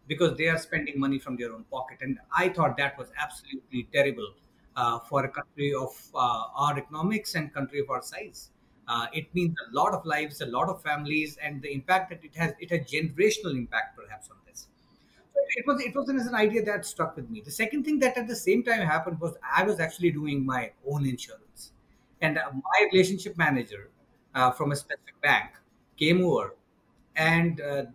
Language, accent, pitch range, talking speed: English, Indian, 150-205 Hz, 210 wpm